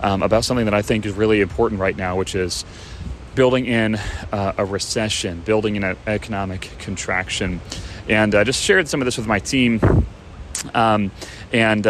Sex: male